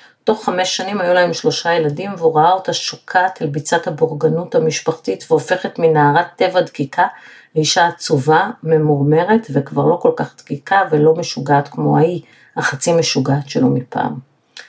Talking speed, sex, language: 145 wpm, female, Hebrew